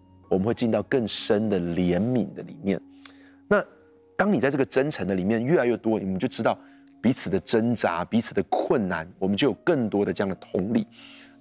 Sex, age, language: male, 30-49, Chinese